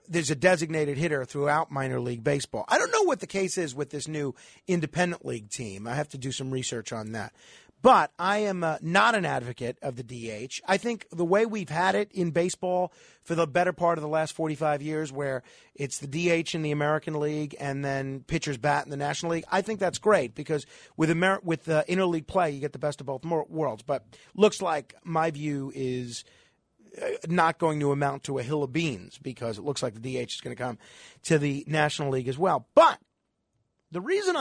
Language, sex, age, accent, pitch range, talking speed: English, male, 40-59, American, 140-190 Hz, 220 wpm